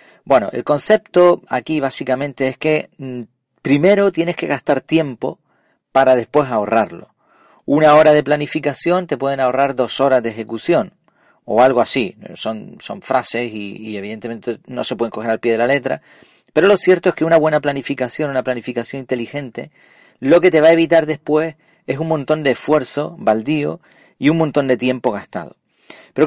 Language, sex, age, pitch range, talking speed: Spanish, male, 40-59, 125-160 Hz, 170 wpm